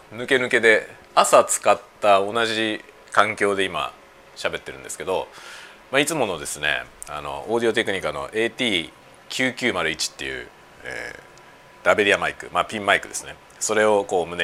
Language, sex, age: Japanese, male, 40-59